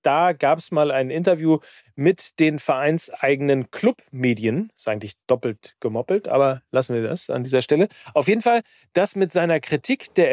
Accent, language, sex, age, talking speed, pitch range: German, German, male, 40-59, 170 wpm, 130-170 Hz